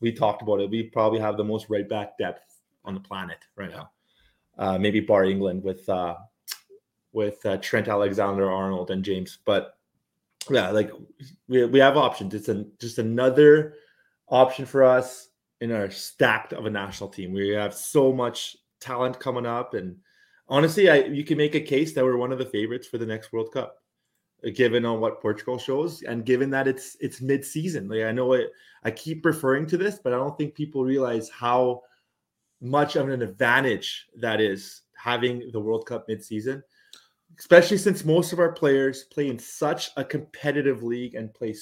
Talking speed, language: 185 wpm, English